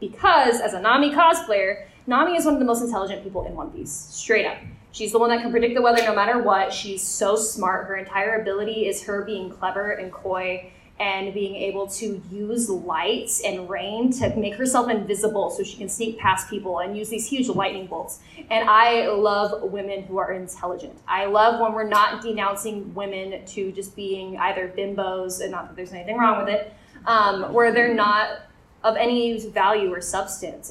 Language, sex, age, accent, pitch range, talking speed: English, female, 20-39, American, 195-230 Hz, 195 wpm